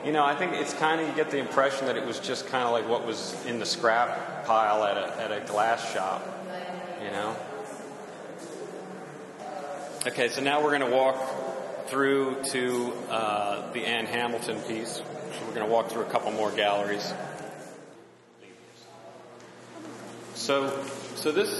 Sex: male